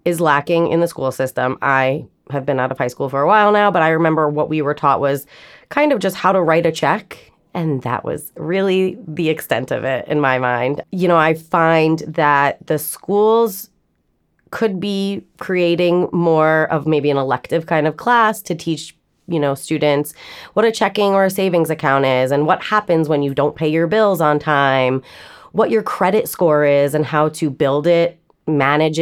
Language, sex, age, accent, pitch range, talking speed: English, female, 30-49, American, 140-175 Hz, 200 wpm